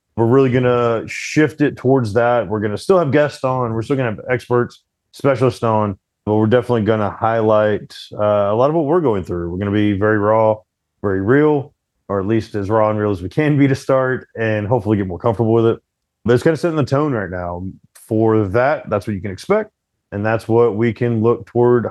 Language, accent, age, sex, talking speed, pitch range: English, American, 30-49, male, 240 wpm, 105-130 Hz